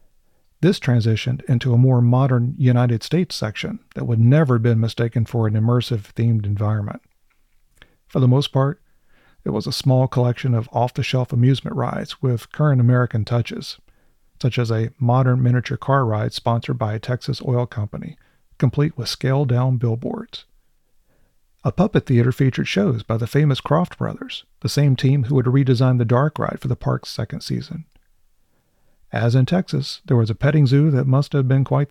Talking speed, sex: 170 wpm, male